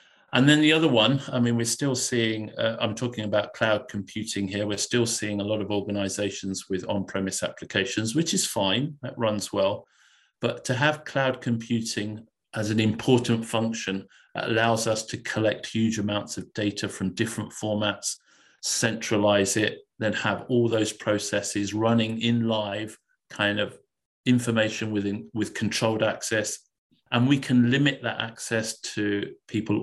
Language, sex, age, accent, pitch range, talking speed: English, male, 50-69, British, 100-120 Hz, 155 wpm